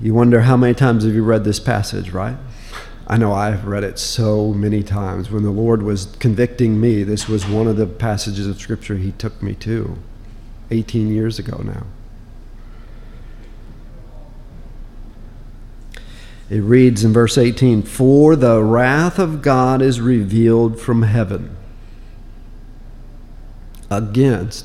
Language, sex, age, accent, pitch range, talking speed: English, male, 50-69, American, 105-120 Hz, 135 wpm